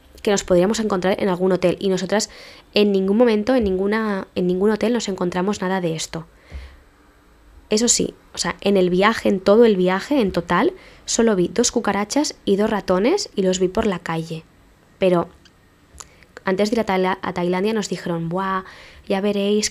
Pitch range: 175-210 Hz